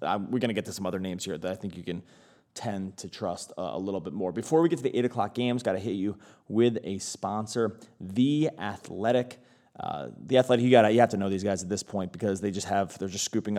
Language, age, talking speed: English, 30-49, 260 wpm